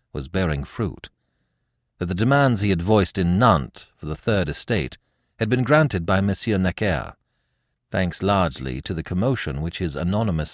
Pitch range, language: 80-125 Hz, English